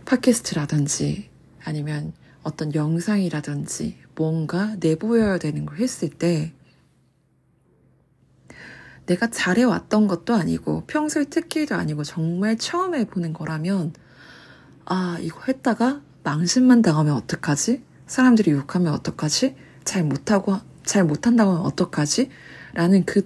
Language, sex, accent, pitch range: Korean, female, native, 150-210 Hz